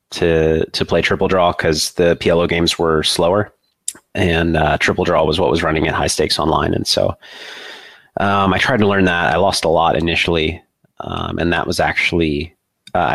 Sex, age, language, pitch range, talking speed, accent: male, 30-49, English, 80-100 Hz, 190 wpm, American